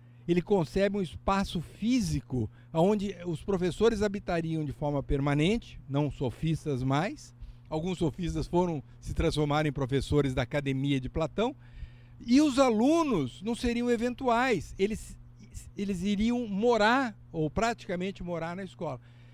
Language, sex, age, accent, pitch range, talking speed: Portuguese, male, 60-79, Brazilian, 130-200 Hz, 125 wpm